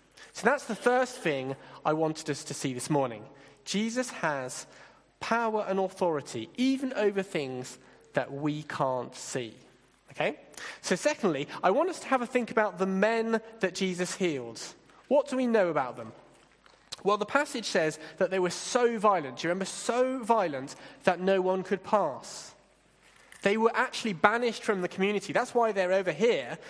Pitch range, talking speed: 165-240 Hz, 175 wpm